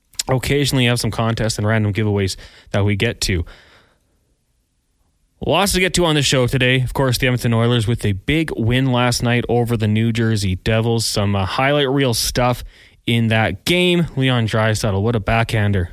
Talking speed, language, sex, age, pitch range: 180 wpm, English, male, 20-39, 110-130 Hz